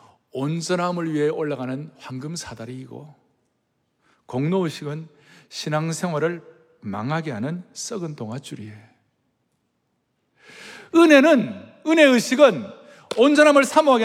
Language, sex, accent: Korean, male, native